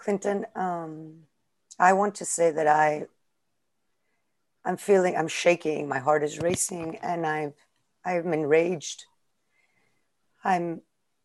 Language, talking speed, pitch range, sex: English, 115 wpm, 160-215 Hz, female